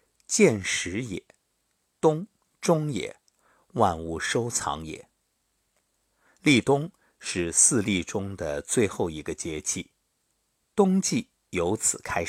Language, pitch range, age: Chinese, 90-150 Hz, 50-69